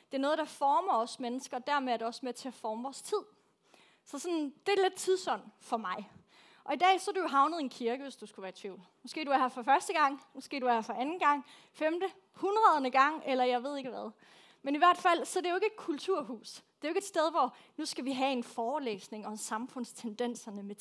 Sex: female